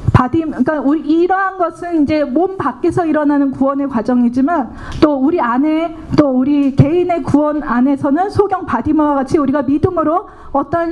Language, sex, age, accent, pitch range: Korean, female, 40-59, native, 260-335 Hz